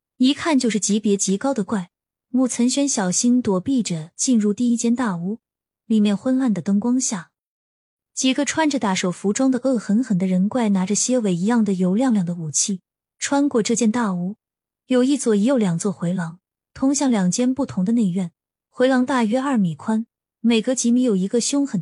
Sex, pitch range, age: female, 195-250 Hz, 20-39